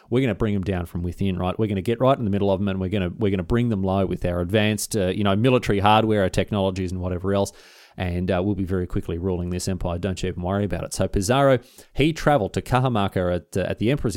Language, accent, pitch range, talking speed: English, Australian, 95-125 Hz, 290 wpm